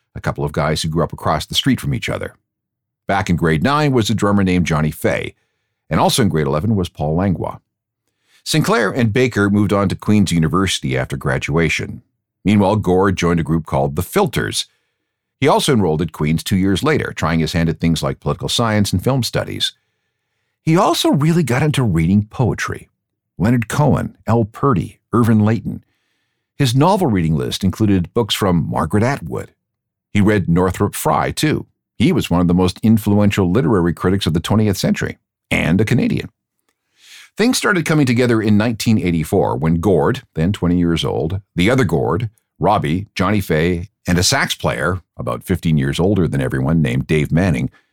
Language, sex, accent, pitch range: English, male, American, 85-115 Hz